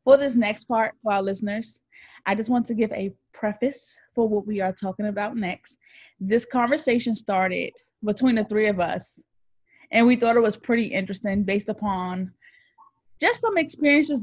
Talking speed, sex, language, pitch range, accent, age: 175 wpm, female, English, 195-245 Hz, American, 20-39